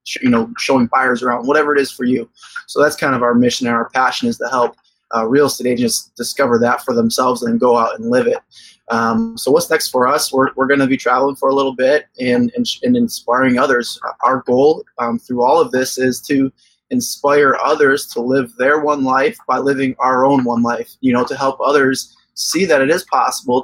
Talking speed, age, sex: 225 wpm, 20-39, male